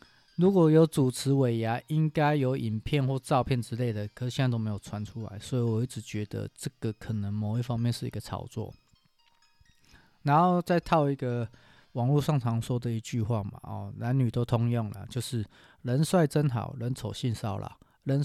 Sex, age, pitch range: male, 20-39, 115-150 Hz